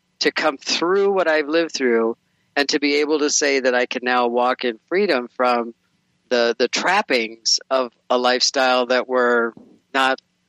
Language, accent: English, American